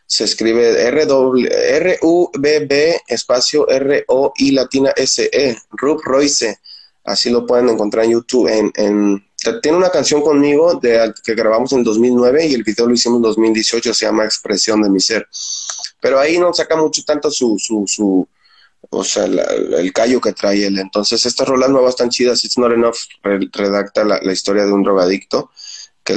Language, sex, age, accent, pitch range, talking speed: Spanish, male, 20-39, Mexican, 100-120 Hz, 155 wpm